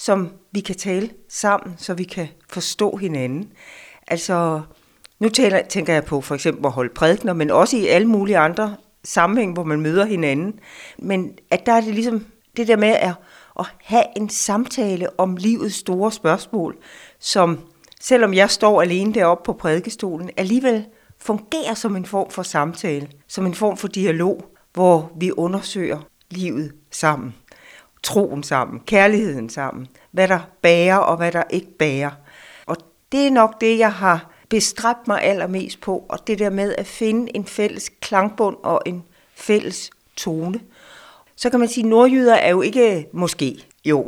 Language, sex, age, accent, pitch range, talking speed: Danish, female, 60-79, native, 170-215 Hz, 160 wpm